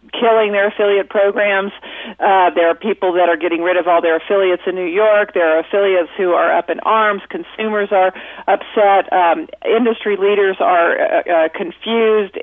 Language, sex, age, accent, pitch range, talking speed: English, female, 50-69, American, 185-215 Hz, 175 wpm